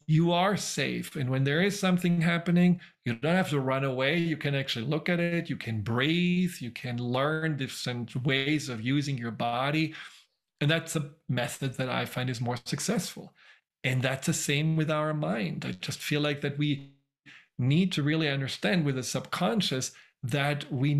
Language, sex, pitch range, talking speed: English, male, 130-160 Hz, 185 wpm